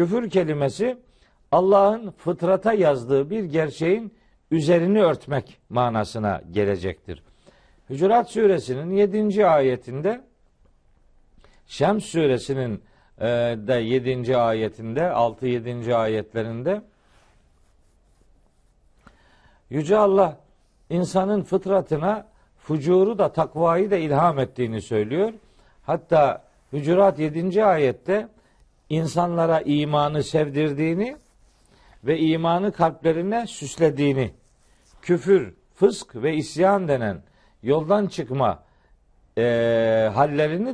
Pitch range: 125-195 Hz